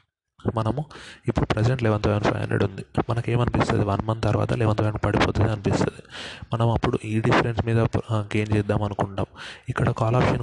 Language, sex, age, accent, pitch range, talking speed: Telugu, male, 20-39, native, 105-120 Hz, 160 wpm